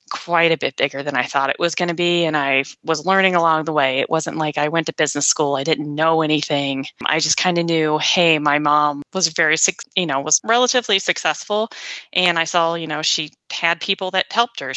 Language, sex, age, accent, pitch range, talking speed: English, female, 20-39, American, 150-185 Hz, 230 wpm